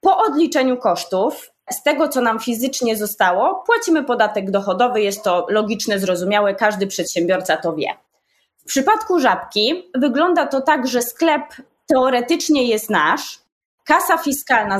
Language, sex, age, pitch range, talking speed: Polish, female, 20-39, 210-300 Hz, 135 wpm